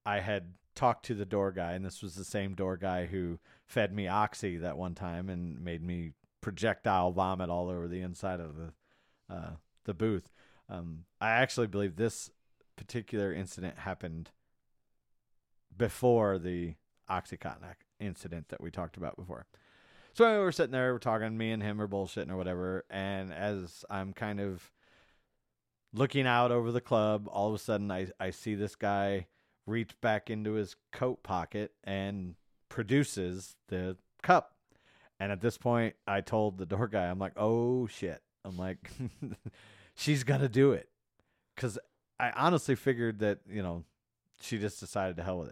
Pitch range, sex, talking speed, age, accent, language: 90-110 Hz, male, 170 wpm, 40-59, American, English